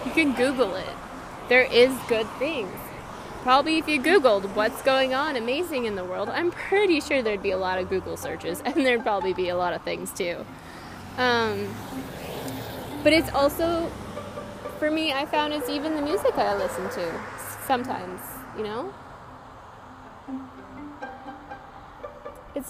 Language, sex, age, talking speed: English, female, 10-29, 150 wpm